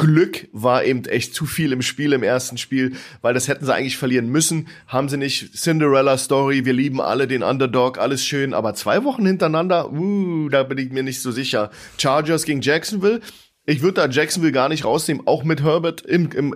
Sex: male